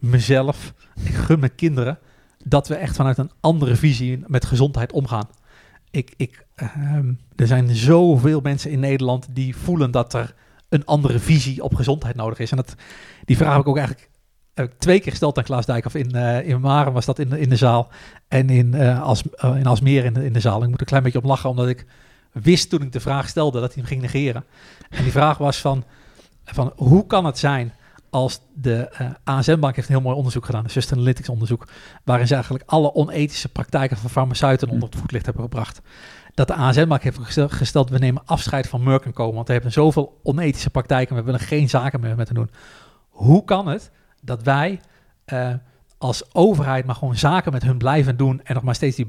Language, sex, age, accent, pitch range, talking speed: Dutch, male, 50-69, Dutch, 125-145 Hz, 215 wpm